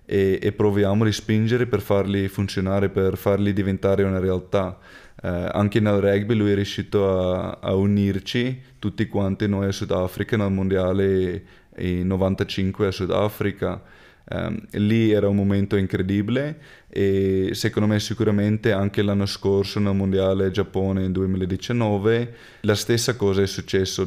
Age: 20-39